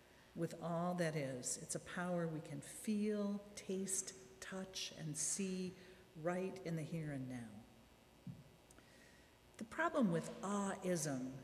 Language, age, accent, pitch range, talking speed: English, 50-69, American, 165-230 Hz, 125 wpm